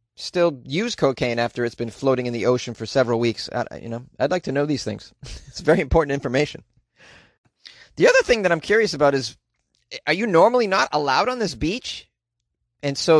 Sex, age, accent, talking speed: male, 30-49, American, 200 wpm